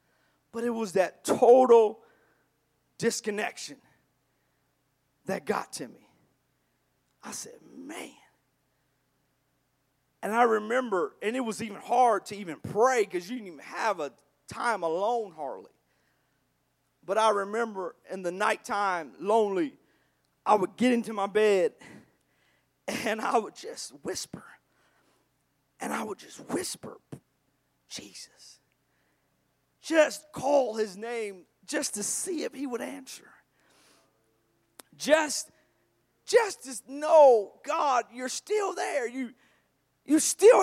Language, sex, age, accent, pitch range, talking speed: English, male, 40-59, American, 205-280 Hz, 120 wpm